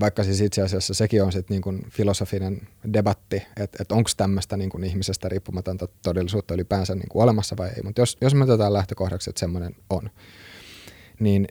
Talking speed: 165 wpm